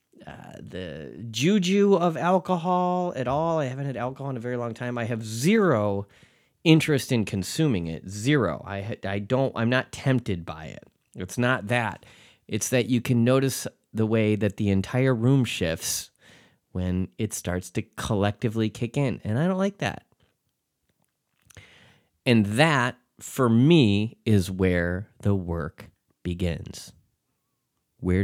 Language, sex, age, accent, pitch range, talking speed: English, male, 30-49, American, 100-135 Hz, 145 wpm